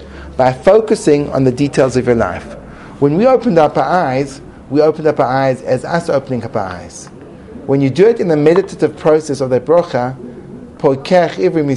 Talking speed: 190 wpm